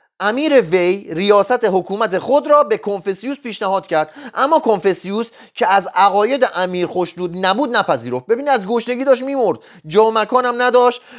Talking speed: 150 wpm